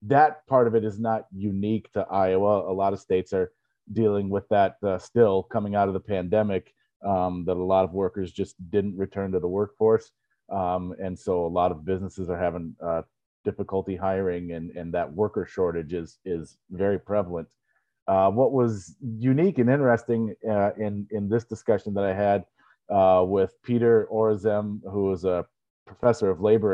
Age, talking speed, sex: 30-49, 180 wpm, male